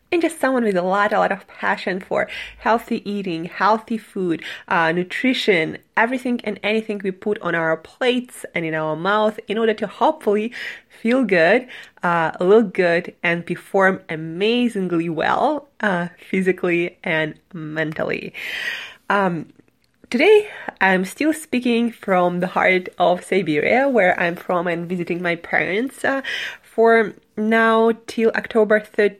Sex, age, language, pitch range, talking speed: female, 20-39, English, 175-230 Hz, 140 wpm